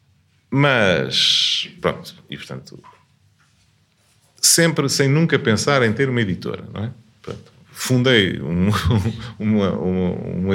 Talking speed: 115 wpm